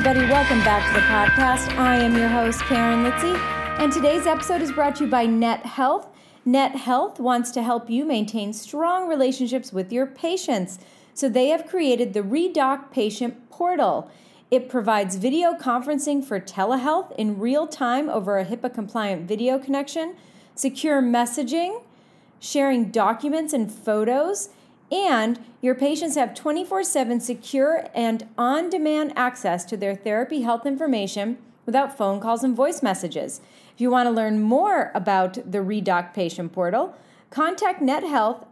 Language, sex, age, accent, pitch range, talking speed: English, female, 40-59, American, 220-290 Hz, 150 wpm